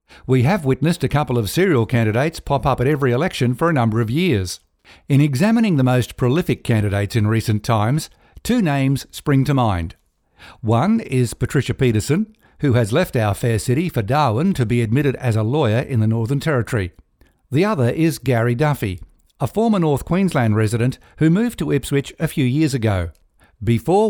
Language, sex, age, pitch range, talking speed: English, male, 60-79, 115-155 Hz, 180 wpm